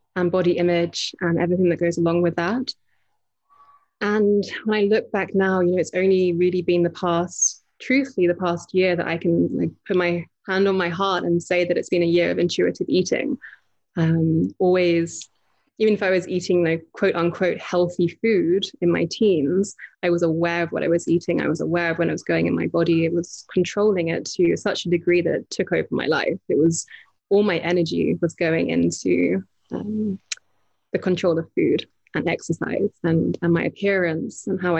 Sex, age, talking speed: female, 20-39, 205 wpm